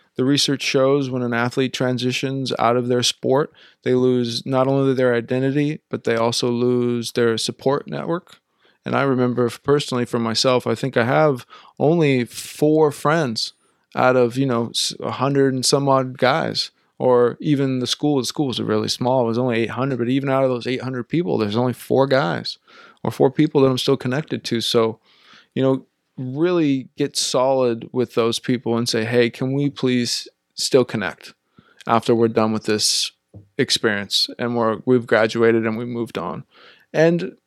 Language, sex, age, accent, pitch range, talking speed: English, male, 20-39, American, 120-145 Hz, 180 wpm